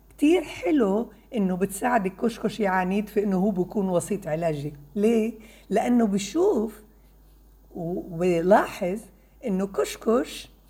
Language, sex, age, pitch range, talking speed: Arabic, female, 60-79, 180-270 Hz, 100 wpm